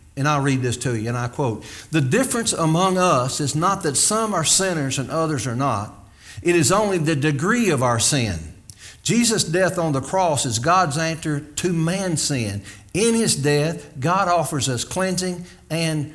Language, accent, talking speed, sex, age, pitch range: English, American, 185 wpm, male, 60-79, 120-170 Hz